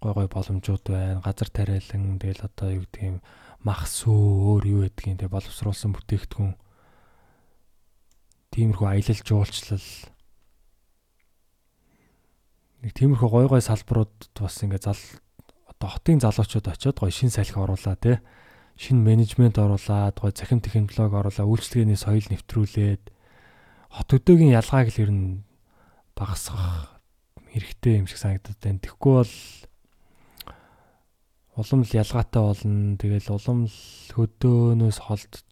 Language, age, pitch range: Korean, 20-39, 95-115 Hz